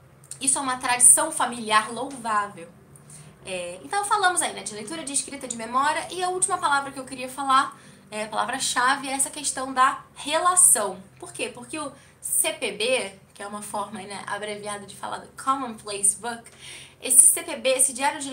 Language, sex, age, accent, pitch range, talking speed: Portuguese, female, 10-29, Brazilian, 215-285 Hz, 175 wpm